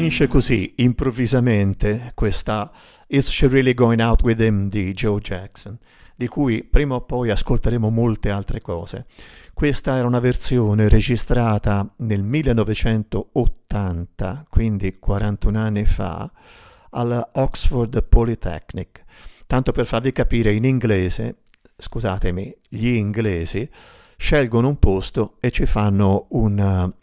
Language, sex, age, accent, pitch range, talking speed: Italian, male, 50-69, native, 100-125 Hz, 115 wpm